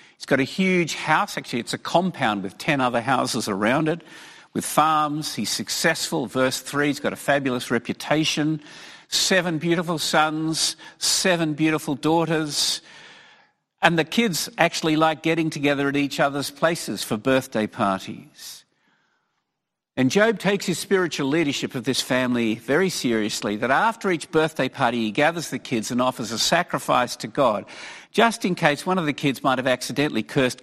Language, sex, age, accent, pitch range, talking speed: English, male, 50-69, Australian, 125-170 Hz, 165 wpm